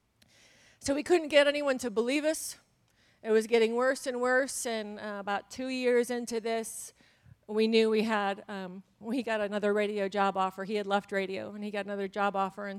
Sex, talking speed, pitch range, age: female, 200 wpm, 195-225 Hz, 40-59